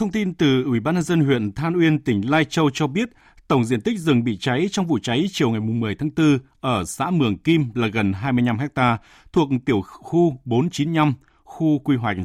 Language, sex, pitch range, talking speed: Vietnamese, male, 105-150 Hz, 215 wpm